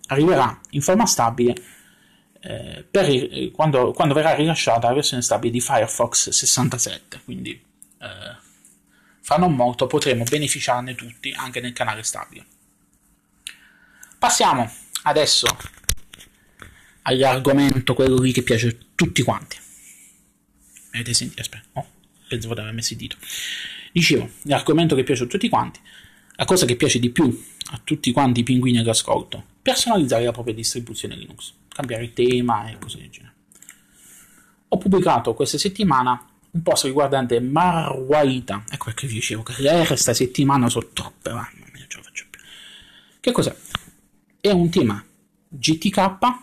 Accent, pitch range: native, 115-160 Hz